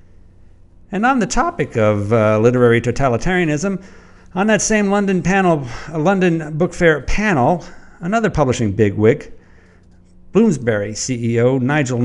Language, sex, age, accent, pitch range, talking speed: English, male, 50-69, American, 115-170 Hz, 120 wpm